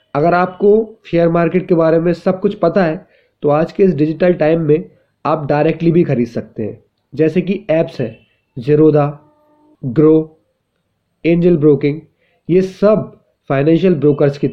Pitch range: 140-175 Hz